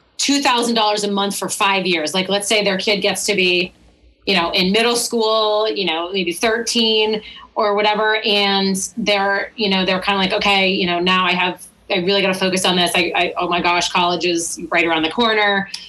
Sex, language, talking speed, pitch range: female, English, 210 wpm, 175-220 Hz